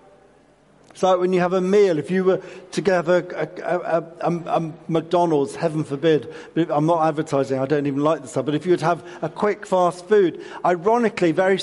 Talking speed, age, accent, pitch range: 190 wpm, 50-69, British, 160-195 Hz